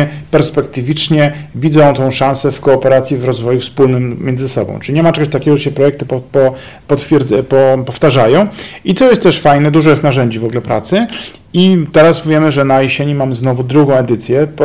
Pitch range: 130-150 Hz